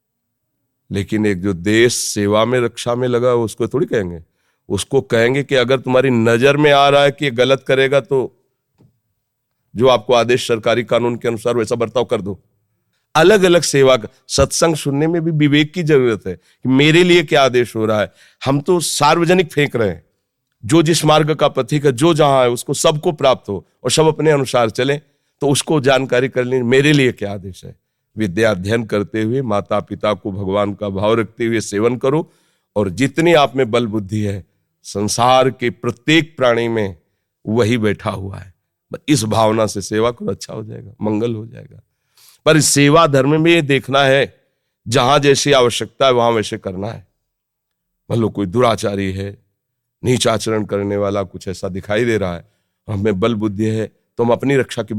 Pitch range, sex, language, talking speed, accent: 105-140 Hz, male, Hindi, 185 wpm, native